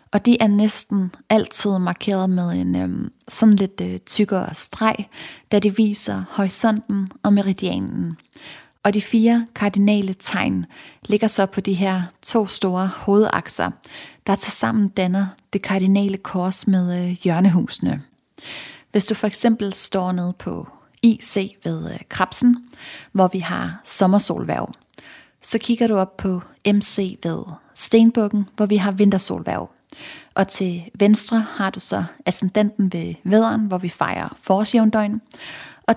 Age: 30-49